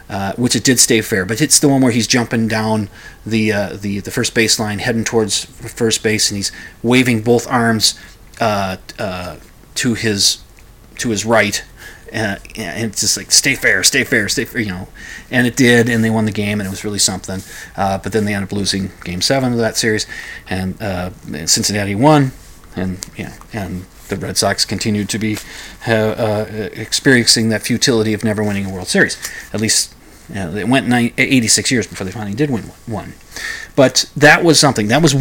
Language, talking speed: English, 200 wpm